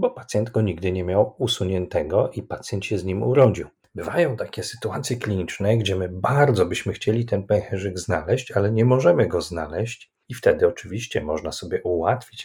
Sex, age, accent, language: male, 40-59, native, Polish